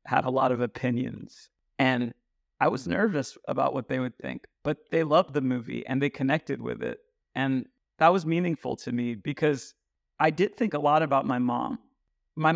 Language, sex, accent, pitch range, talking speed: English, male, American, 130-155 Hz, 190 wpm